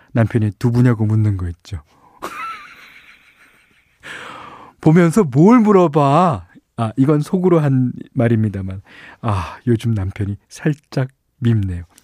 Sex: male